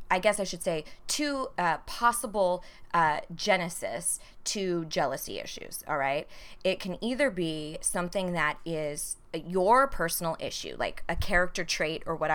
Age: 20-39